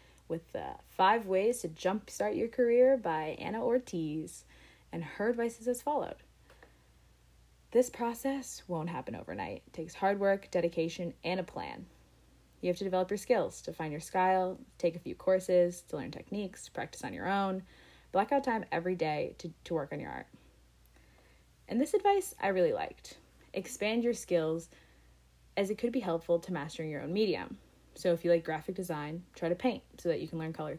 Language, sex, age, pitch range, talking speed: English, female, 20-39, 160-215 Hz, 185 wpm